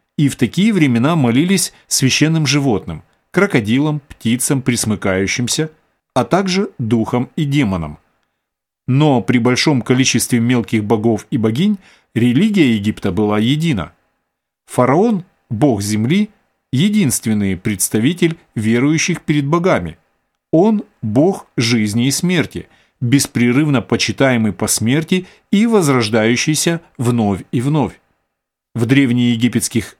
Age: 40-59